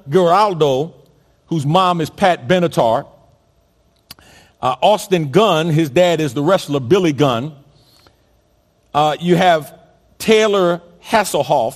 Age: 50-69